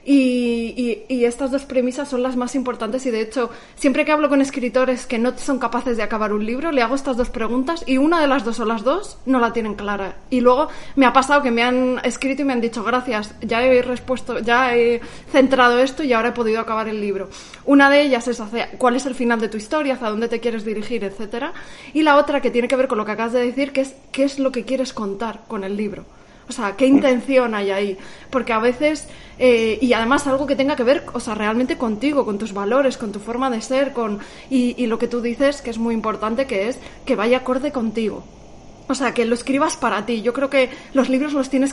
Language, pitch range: Spanish, 230-270 Hz